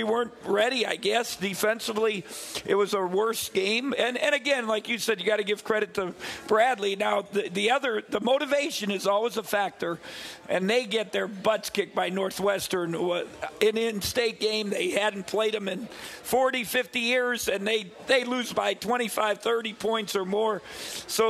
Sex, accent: male, American